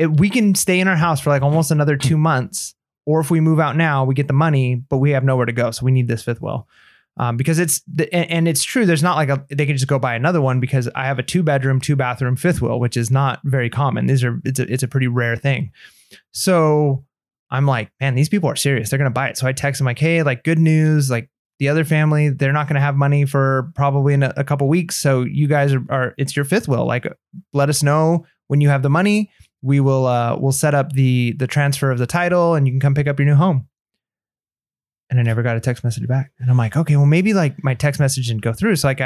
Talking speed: 270 wpm